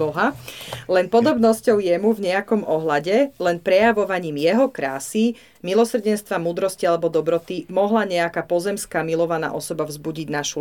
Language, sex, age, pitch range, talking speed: Slovak, female, 40-59, 155-185 Hz, 125 wpm